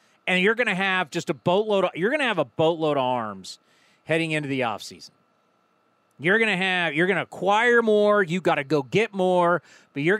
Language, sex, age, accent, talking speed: English, male, 40-59, American, 200 wpm